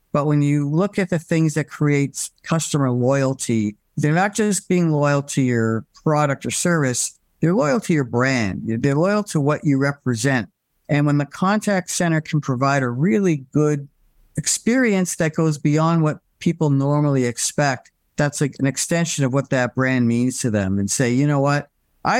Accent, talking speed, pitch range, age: American, 180 wpm, 125-170 Hz, 50-69